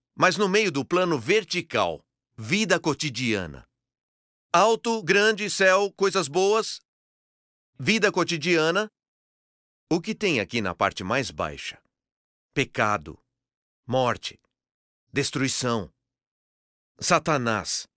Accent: Brazilian